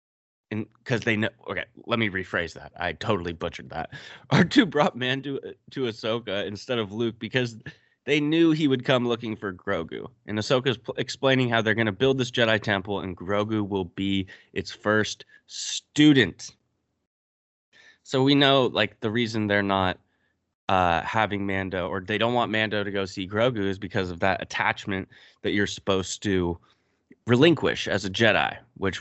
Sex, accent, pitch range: male, American, 95-125 Hz